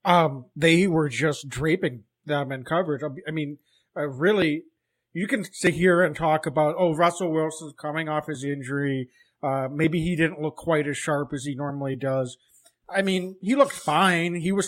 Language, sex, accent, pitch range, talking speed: English, male, American, 155-185 Hz, 185 wpm